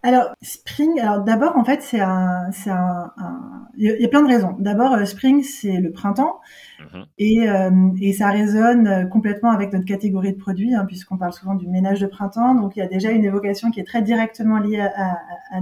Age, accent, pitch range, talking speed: 20-39, French, 195-245 Hz, 215 wpm